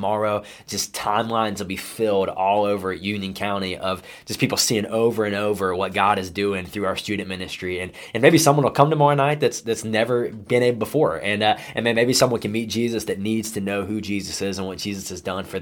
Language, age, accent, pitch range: English, 20-39, American, 100-130 Hz